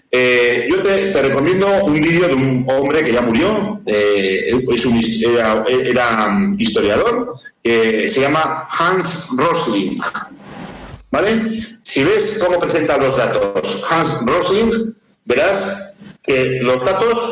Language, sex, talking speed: Spanish, male, 135 wpm